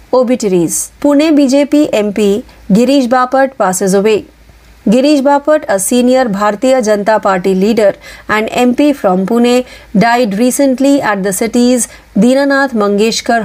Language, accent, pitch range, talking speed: Marathi, native, 205-265 Hz, 120 wpm